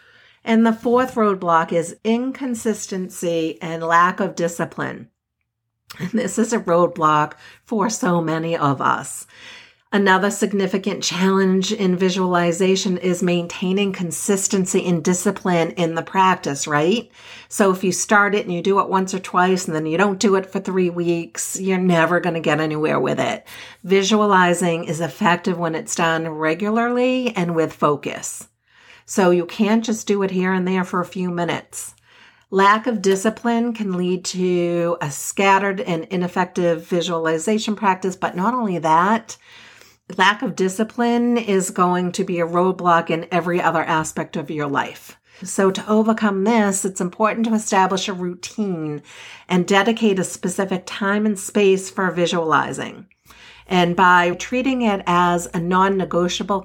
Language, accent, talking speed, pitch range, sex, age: English, American, 155 wpm, 175-205 Hz, female, 50-69